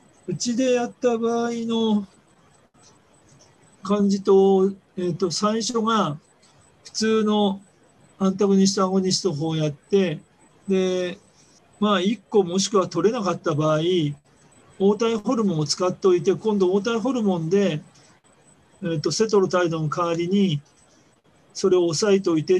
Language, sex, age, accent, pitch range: Japanese, male, 40-59, native, 160-205 Hz